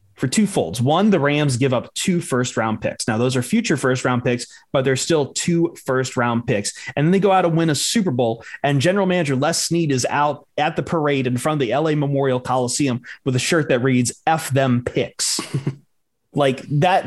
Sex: male